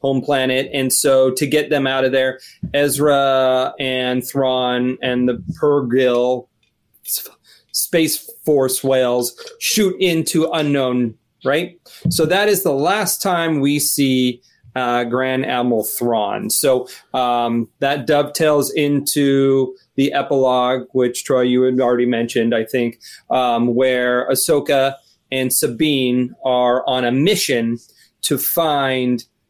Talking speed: 125 wpm